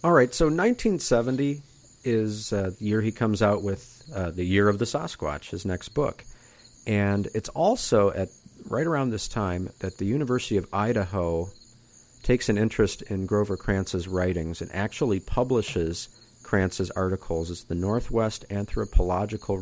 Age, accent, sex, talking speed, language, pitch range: 50-69, American, male, 155 wpm, English, 90-120 Hz